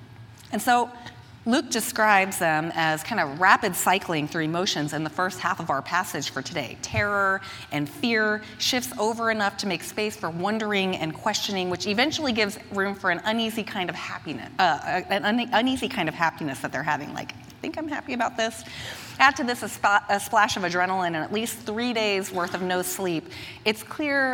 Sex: female